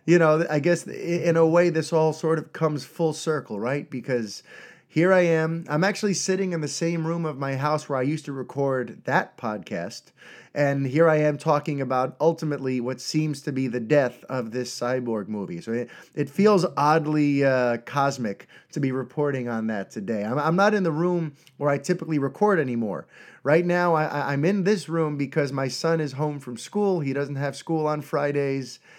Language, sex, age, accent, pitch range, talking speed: English, male, 30-49, American, 130-160 Hz, 200 wpm